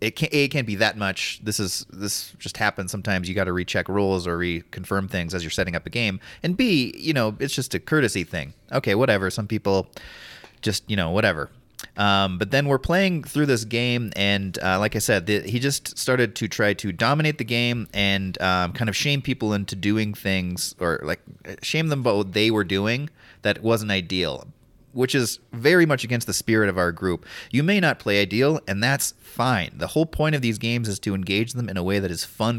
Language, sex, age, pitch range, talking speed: English, male, 30-49, 95-125 Hz, 225 wpm